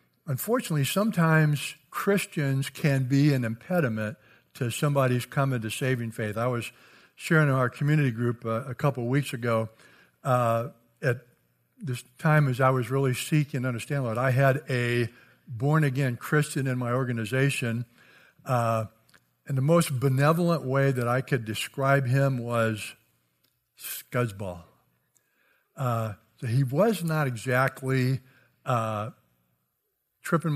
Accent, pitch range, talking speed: American, 120-150 Hz, 135 wpm